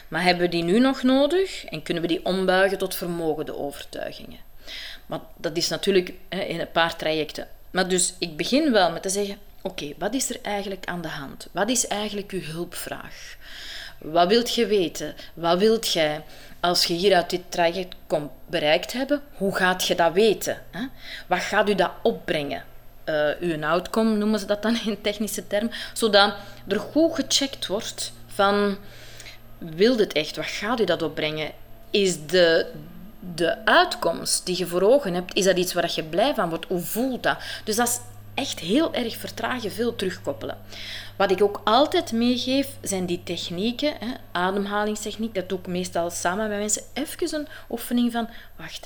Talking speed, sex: 180 wpm, female